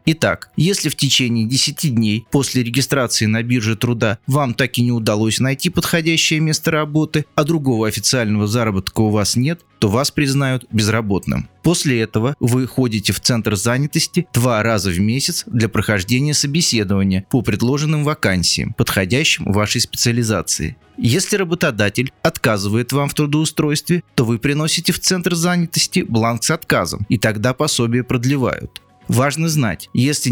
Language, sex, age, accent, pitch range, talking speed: Russian, male, 30-49, native, 110-145 Hz, 145 wpm